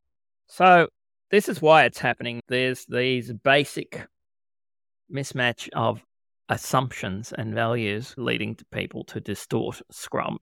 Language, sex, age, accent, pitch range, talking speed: English, male, 30-49, Australian, 105-130 Hz, 115 wpm